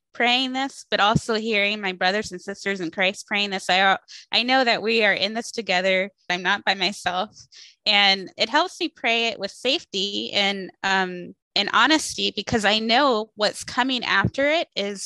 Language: English